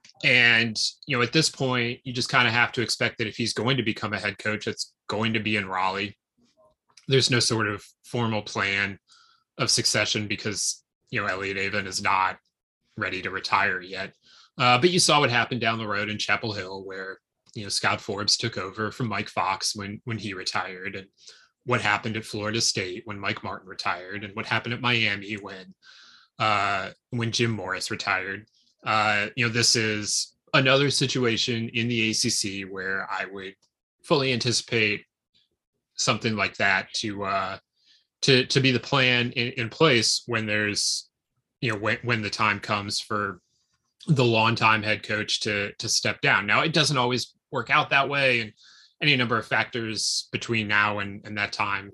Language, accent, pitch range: English, American, 105-120 Hz